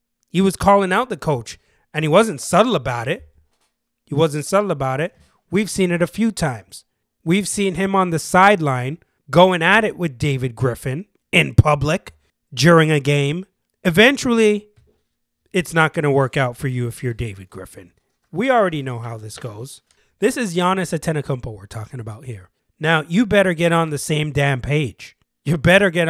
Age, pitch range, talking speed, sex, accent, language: 30-49, 130-190 Hz, 180 wpm, male, American, English